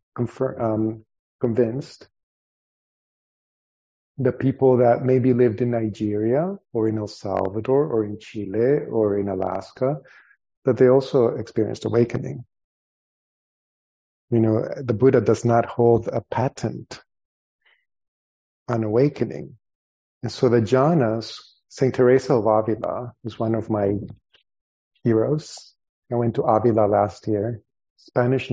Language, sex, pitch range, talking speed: English, male, 105-125 Hz, 115 wpm